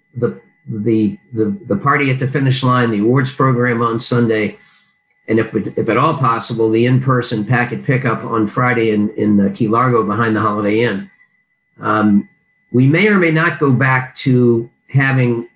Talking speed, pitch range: 175 wpm, 110-130 Hz